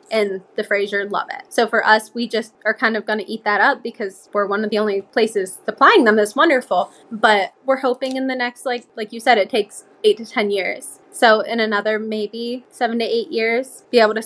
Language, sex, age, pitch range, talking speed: English, female, 20-39, 210-245 Hz, 235 wpm